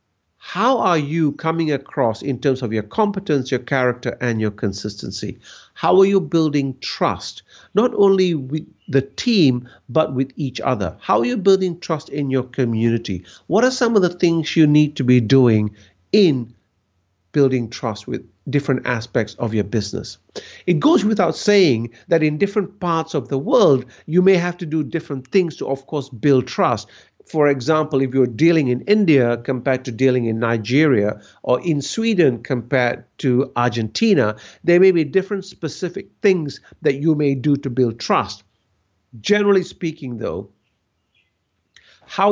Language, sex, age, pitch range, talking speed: English, male, 50-69, 115-160 Hz, 165 wpm